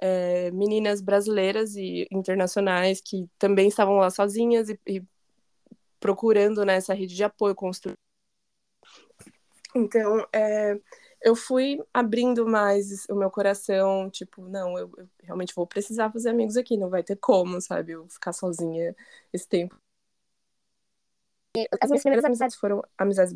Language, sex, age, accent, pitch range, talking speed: Portuguese, female, 20-39, Brazilian, 190-230 Hz, 140 wpm